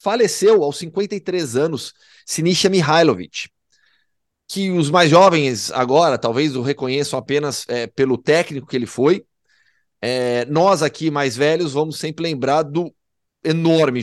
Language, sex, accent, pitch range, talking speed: Portuguese, male, Brazilian, 125-155 Hz, 125 wpm